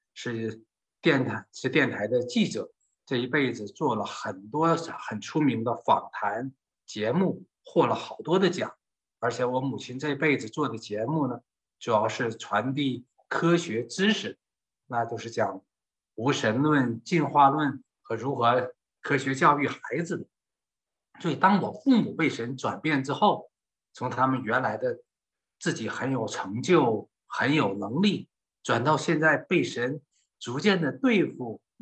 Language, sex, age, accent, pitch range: Chinese, male, 50-69, native, 120-170 Hz